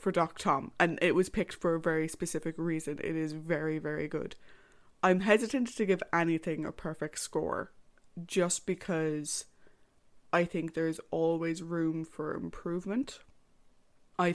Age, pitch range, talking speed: 20-39, 165-190 Hz, 145 wpm